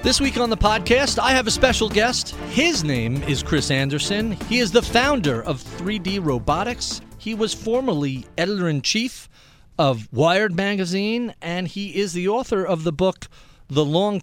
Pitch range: 130-180 Hz